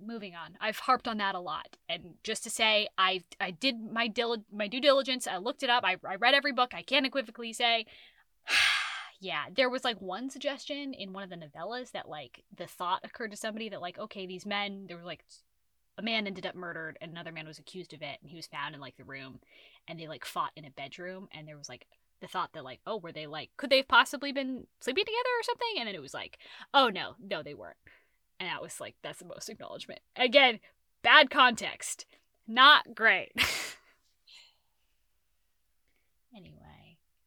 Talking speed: 210 wpm